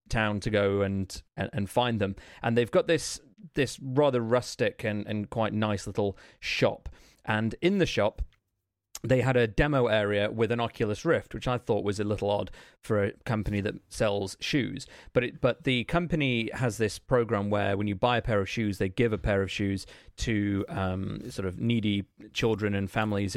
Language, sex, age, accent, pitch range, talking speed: English, male, 30-49, British, 100-120 Hz, 195 wpm